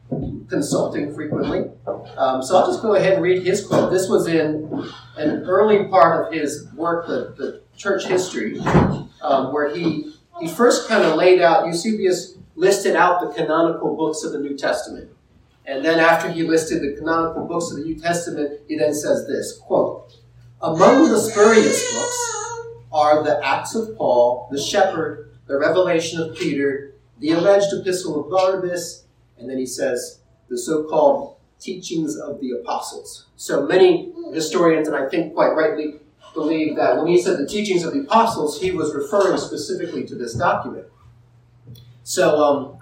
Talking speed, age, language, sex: 165 wpm, 40-59, English, male